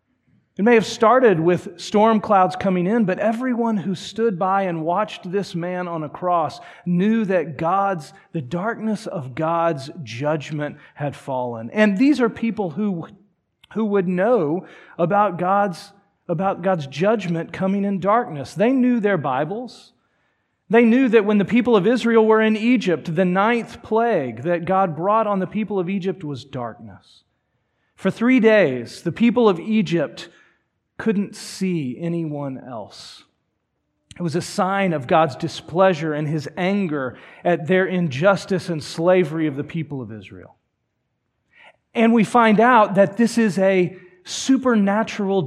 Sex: male